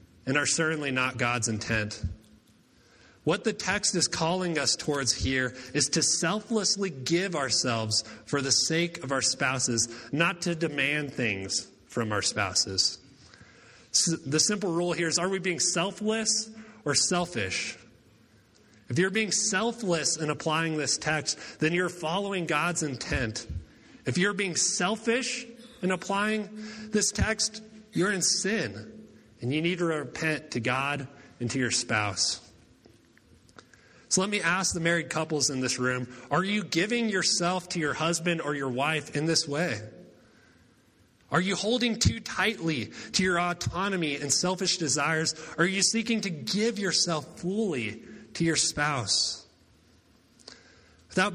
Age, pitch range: 30-49, 135-190 Hz